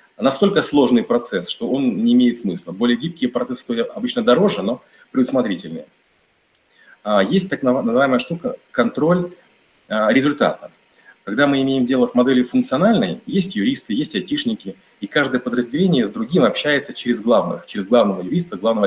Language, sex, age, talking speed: Russian, male, 30-49, 140 wpm